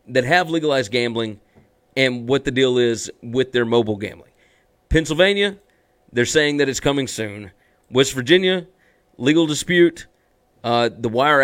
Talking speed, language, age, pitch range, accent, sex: 140 wpm, English, 40-59, 120-150 Hz, American, male